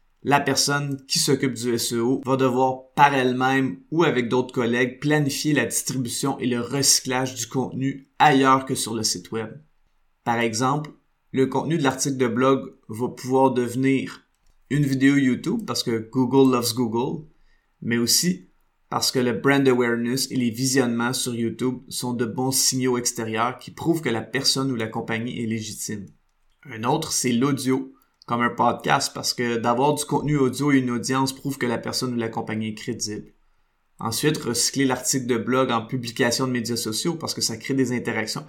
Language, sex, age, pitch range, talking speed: French, male, 20-39, 115-135 Hz, 180 wpm